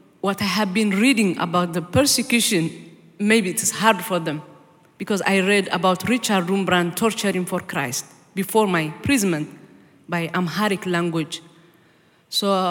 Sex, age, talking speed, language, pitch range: female, 40-59, 140 wpm, English, 185-225 Hz